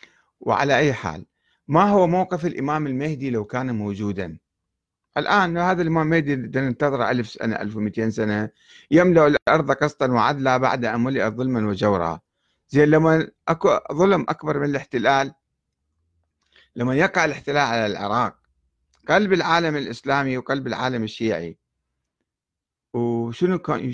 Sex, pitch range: male, 115-165 Hz